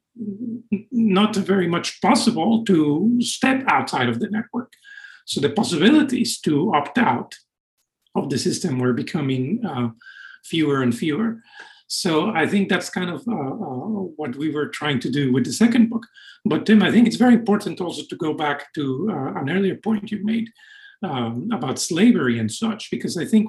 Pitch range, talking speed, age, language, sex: 145-235 Hz, 175 wpm, 50-69, English, male